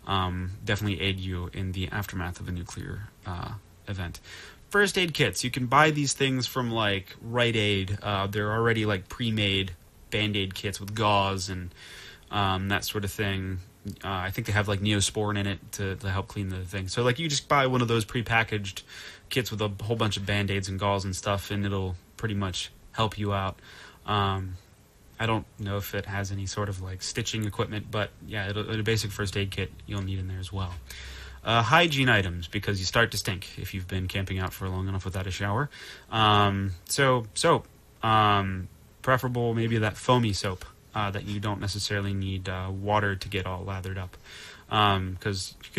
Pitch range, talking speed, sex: 95-110 Hz, 200 wpm, male